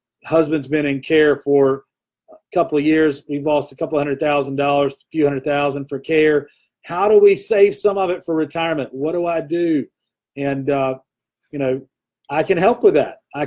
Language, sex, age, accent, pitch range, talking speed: English, male, 40-59, American, 135-165 Hz, 200 wpm